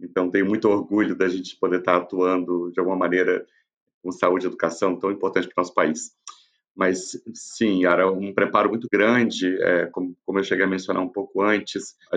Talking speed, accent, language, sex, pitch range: 185 wpm, Brazilian, Portuguese, male, 90-100 Hz